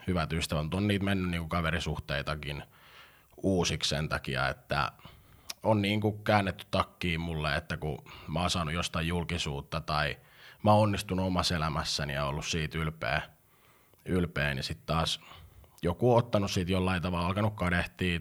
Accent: native